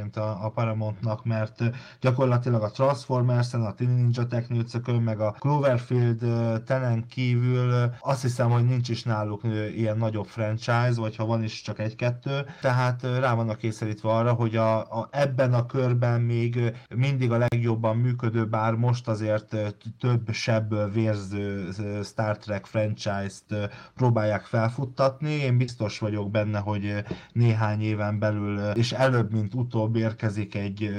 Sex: male